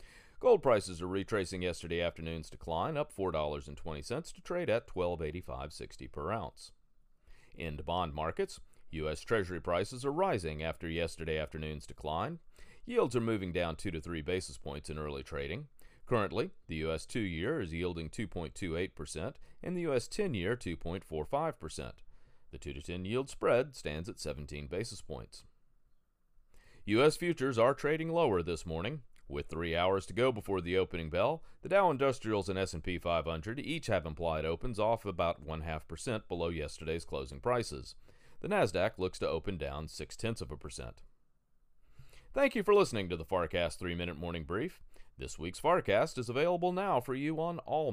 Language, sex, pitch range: English, male, 80-125 Hz